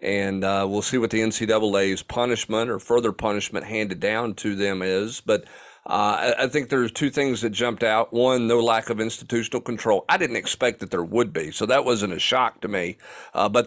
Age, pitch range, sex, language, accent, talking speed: 40-59, 105-125 Hz, male, English, American, 210 wpm